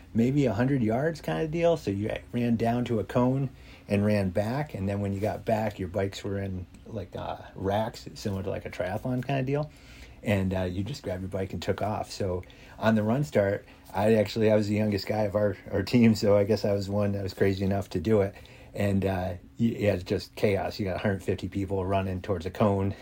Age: 30-49